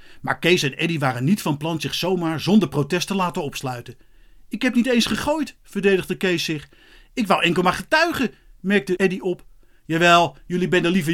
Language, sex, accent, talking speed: Dutch, male, Dutch, 195 wpm